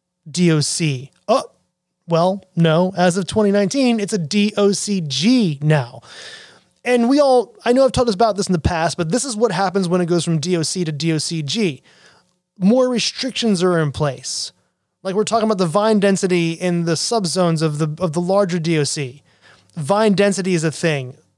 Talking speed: 175 wpm